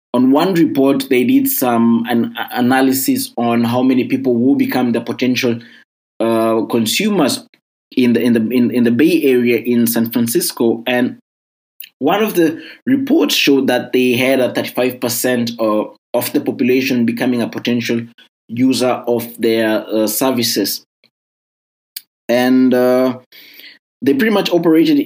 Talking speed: 145 wpm